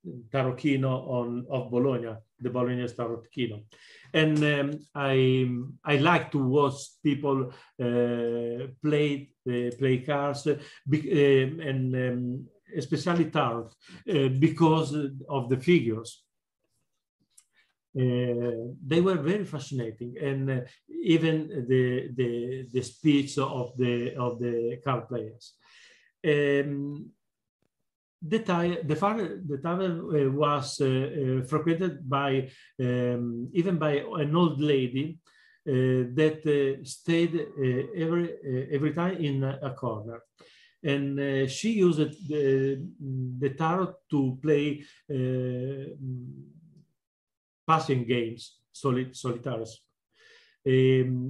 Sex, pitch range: male, 125-155 Hz